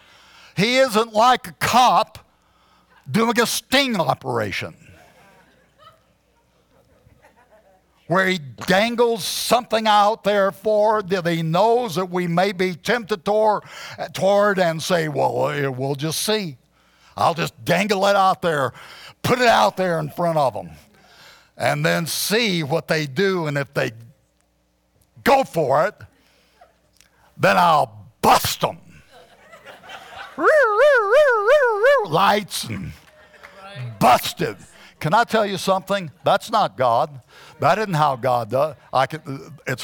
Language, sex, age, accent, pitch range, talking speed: English, male, 60-79, American, 150-220 Hz, 120 wpm